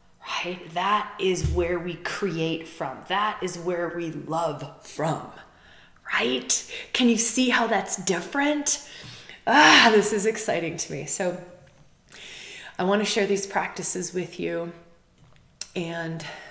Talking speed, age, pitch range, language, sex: 125 wpm, 20-39, 160-190 Hz, English, female